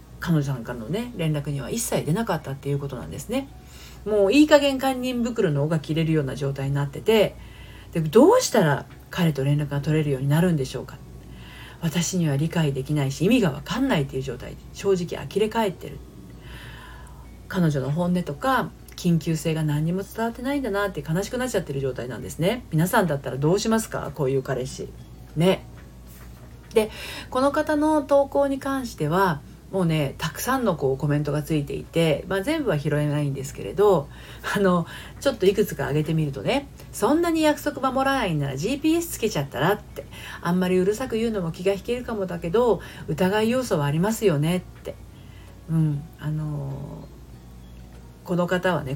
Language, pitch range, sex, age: Japanese, 140-205 Hz, female, 40-59